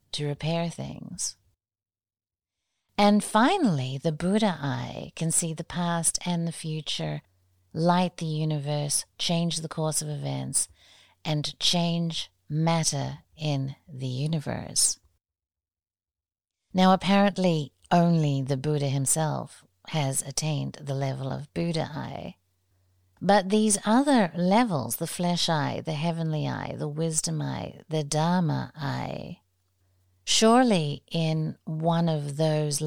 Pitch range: 130-170 Hz